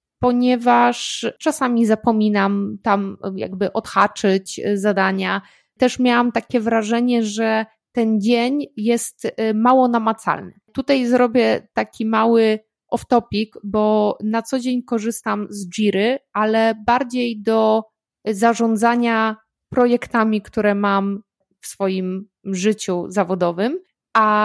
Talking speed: 100 wpm